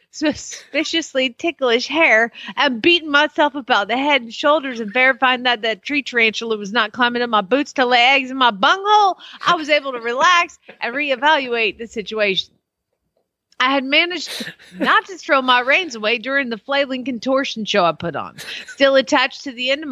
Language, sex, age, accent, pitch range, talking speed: English, female, 40-59, American, 245-335 Hz, 185 wpm